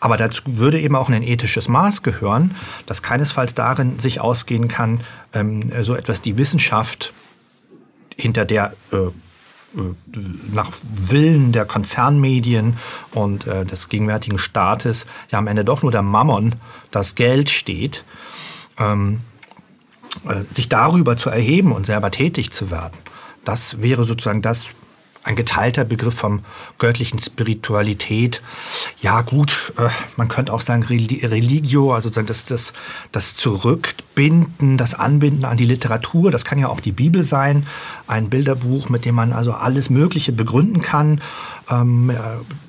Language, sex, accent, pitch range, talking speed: German, male, German, 110-135 Hz, 130 wpm